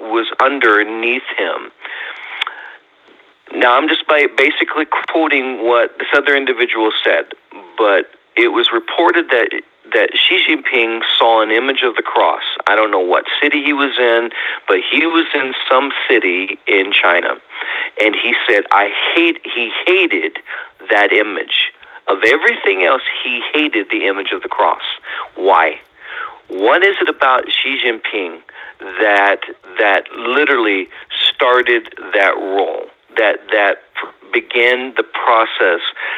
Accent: American